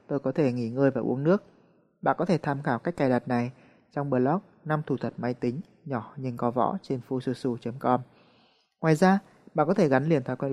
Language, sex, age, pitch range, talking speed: Vietnamese, male, 20-39, 130-170 Hz, 230 wpm